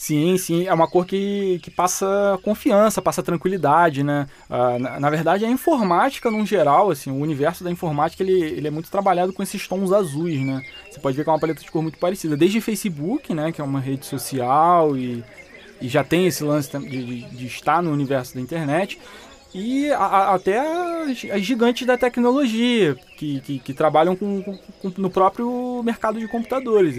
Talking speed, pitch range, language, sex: 200 wpm, 135-195 Hz, Portuguese, male